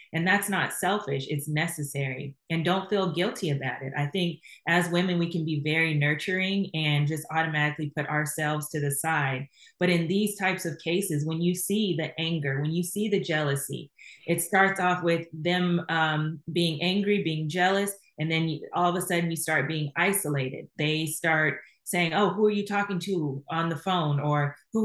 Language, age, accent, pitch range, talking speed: English, 20-39, American, 155-190 Hz, 190 wpm